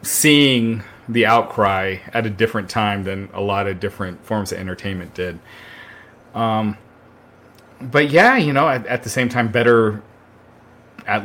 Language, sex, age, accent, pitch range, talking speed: English, male, 30-49, American, 95-115 Hz, 150 wpm